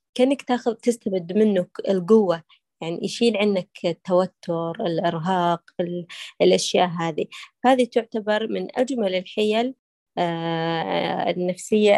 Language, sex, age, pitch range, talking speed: Arabic, female, 20-39, 175-220 Hz, 85 wpm